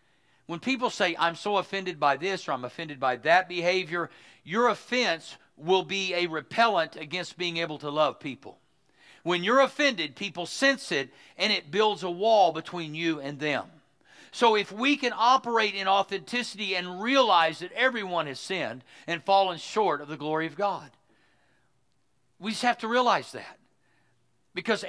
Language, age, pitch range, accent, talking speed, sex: English, 50-69, 135-190 Hz, American, 165 wpm, male